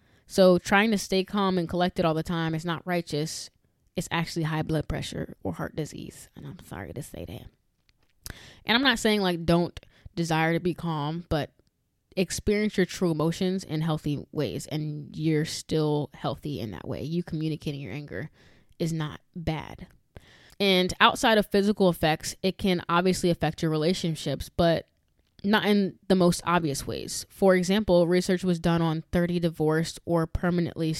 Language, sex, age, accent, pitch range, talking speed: English, female, 20-39, American, 155-180 Hz, 170 wpm